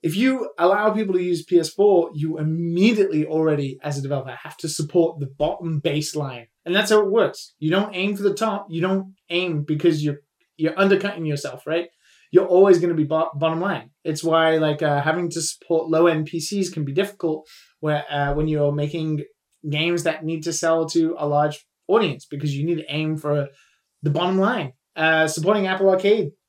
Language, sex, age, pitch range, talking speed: English, male, 20-39, 150-190 Hz, 195 wpm